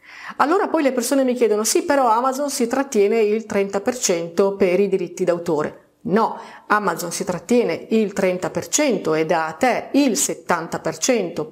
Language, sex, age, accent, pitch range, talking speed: Italian, female, 40-59, native, 185-245 Hz, 145 wpm